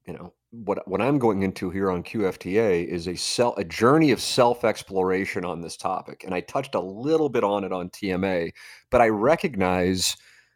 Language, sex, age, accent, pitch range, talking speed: English, male, 40-59, American, 95-120 Hz, 190 wpm